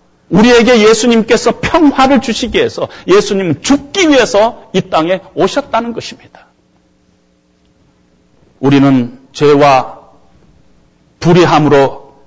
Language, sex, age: Korean, male, 40-59